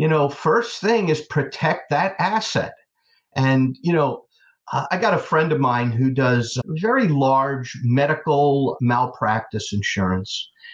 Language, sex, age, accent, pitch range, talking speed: English, male, 50-69, American, 125-160 Hz, 135 wpm